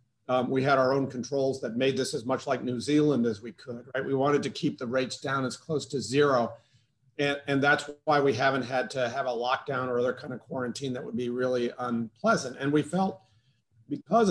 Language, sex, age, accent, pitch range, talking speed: English, male, 50-69, American, 125-150 Hz, 225 wpm